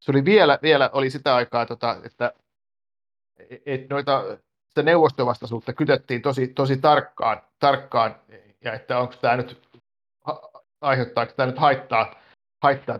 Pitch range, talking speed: 125-155 Hz, 135 wpm